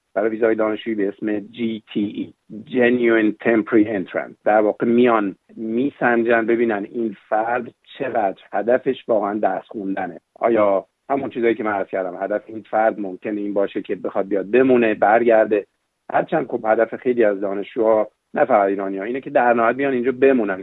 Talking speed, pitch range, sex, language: 150 wpm, 100-120 Hz, male, Persian